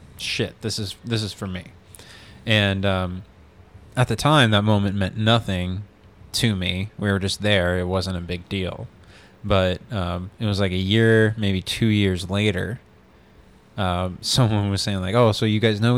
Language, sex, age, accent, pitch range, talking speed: English, male, 20-39, American, 95-115 Hz, 180 wpm